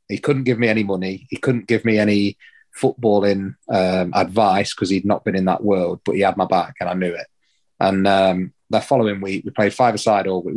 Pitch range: 95-115 Hz